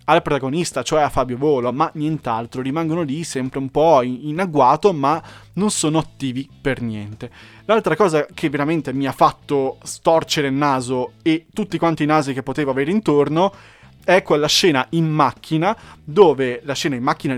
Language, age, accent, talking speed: Italian, 20-39, native, 175 wpm